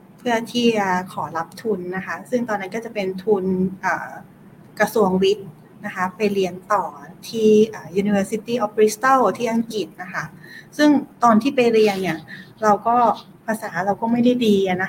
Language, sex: Thai, female